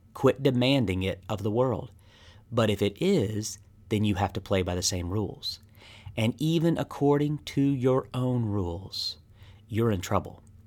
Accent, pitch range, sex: American, 100-130 Hz, male